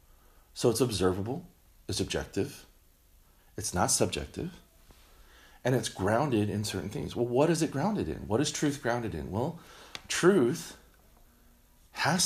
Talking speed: 135 wpm